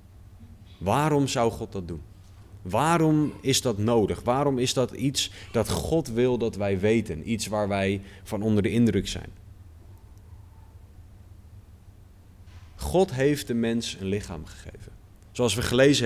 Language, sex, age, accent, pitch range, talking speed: Dutch, male, 30-49, Dutch, 95-120 Hz, 140 wpm